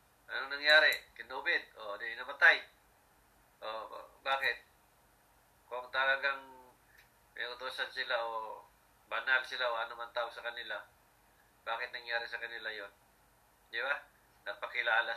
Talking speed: 130 wpm